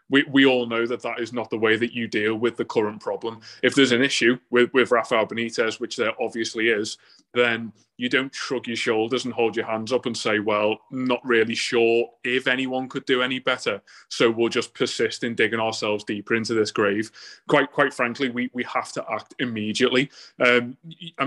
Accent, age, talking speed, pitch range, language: British, 20-39, 205 wpm, 115-130 Hz, English